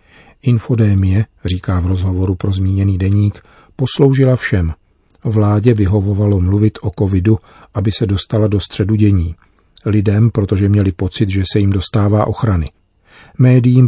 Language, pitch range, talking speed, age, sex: Czech, 90-110 Hz, 130 wpm, 40-59, male